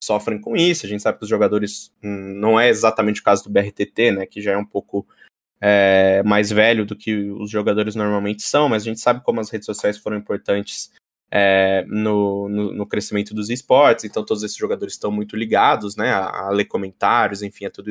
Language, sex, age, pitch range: Portuguese, male, 20-39, 105-120 Hz